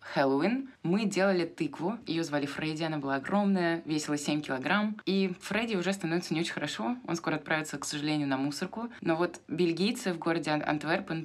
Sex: female